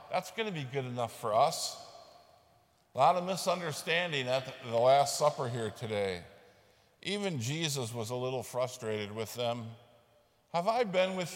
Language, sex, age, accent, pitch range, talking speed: English, male, 50-69, American, 115-150 Hz, 160 wpm